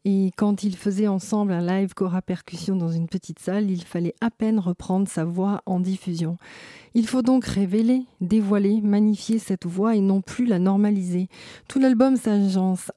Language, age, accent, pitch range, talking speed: French, 40-59, French, 180-215 Hz, 180 wpm